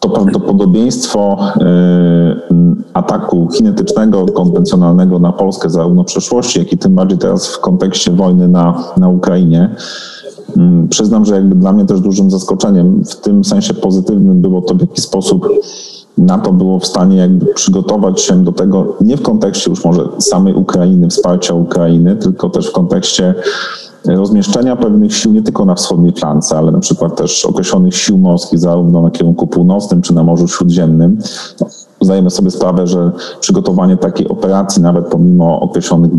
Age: 40-59